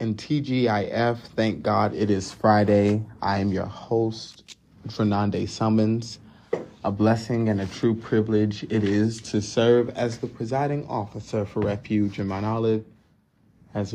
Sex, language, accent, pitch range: male, English, American, 105-120 Hz